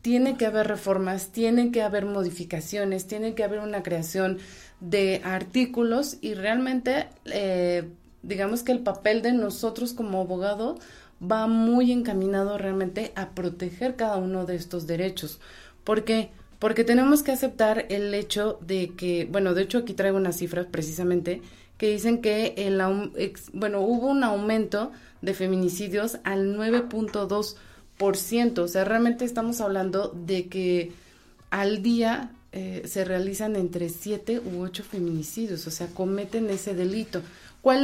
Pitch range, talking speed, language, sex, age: 185-225 Hz, 145 wpm, Spanish, female, 30-49